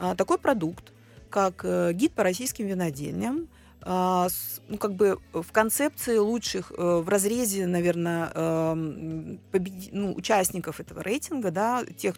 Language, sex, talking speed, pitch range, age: Russian, female, 115 wpm, 170-230 Hz, 30-49